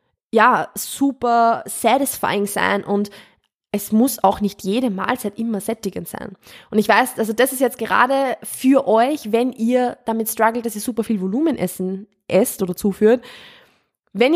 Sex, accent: female, German